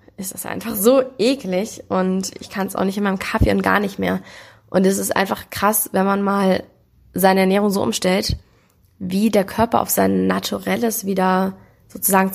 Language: German